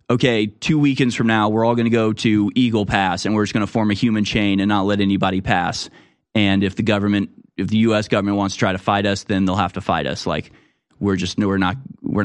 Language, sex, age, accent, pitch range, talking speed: English, male, 20-39, American, 105-140 Hz, 260 wpm